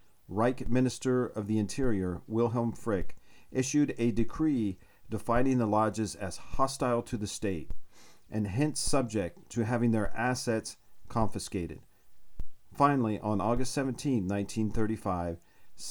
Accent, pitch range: American, 100-130 Hz